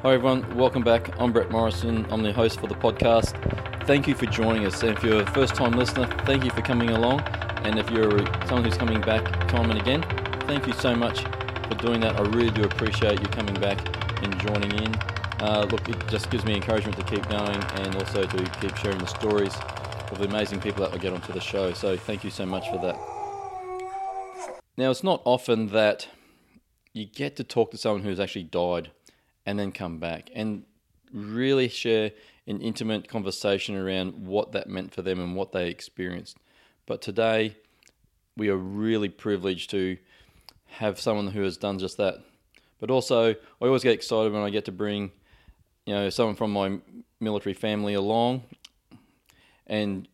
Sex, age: male, 20-39